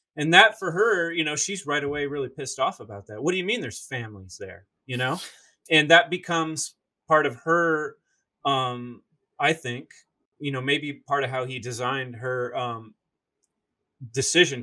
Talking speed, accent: 175 wpm, American